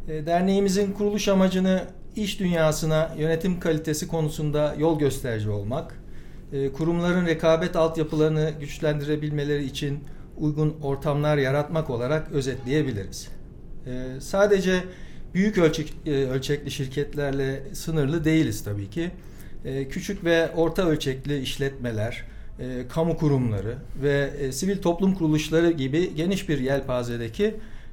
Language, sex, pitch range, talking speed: Turkish, male, 135-175 Hz, 95 wpm